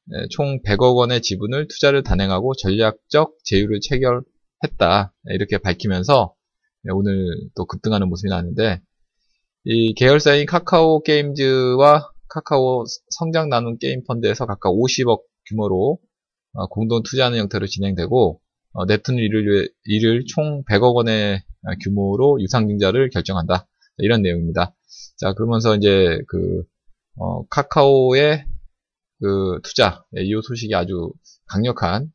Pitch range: 95-130 Hz